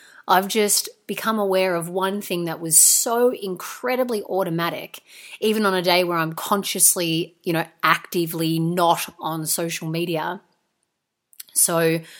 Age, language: 30-49, English